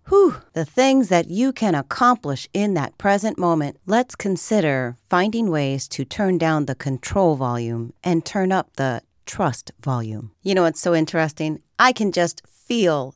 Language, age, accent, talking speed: English, 40-59, American, 160 wpm